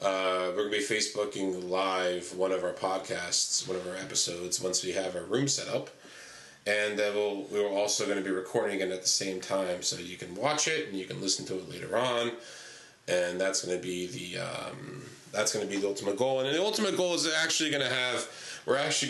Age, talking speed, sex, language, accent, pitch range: 30-49, 215 wpm, male, English, American, 95-120 Hz